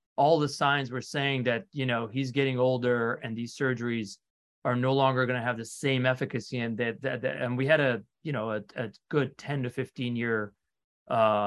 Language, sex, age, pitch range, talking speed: English, male, 30-49, 115-140 Hz, 215 wpm